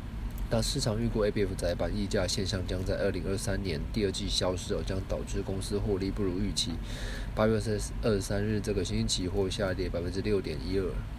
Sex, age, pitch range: male, 20-39, 95-115 Hz